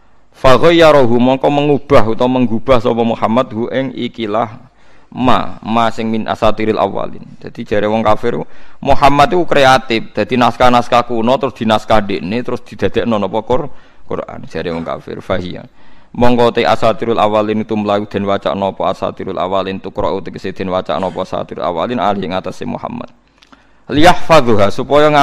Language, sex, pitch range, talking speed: Indonesian, male, 100-125 Hz, 90 wpm